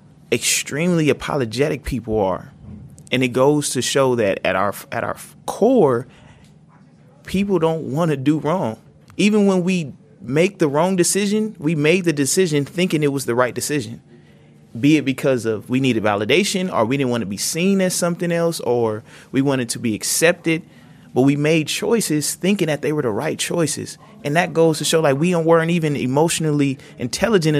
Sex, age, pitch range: male, 30-49, 115-160 Hz